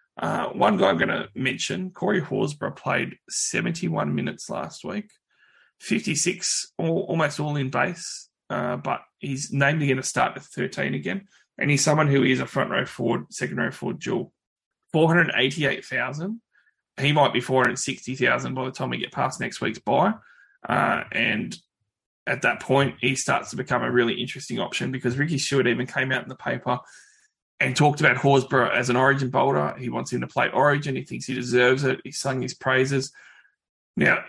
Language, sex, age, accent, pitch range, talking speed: English, male, 20-39, Australian, 125-150 Hz, 180 wpm